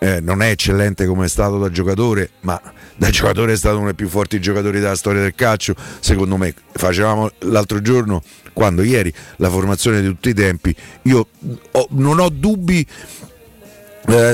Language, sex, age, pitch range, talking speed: Italian, male, 50-69, 95-115 Hz, 170 wpm